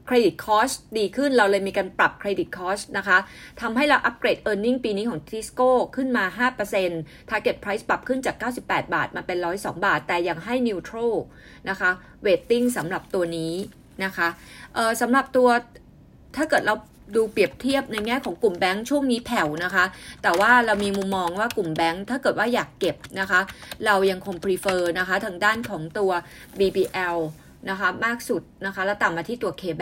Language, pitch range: Thai, 185-235 Hz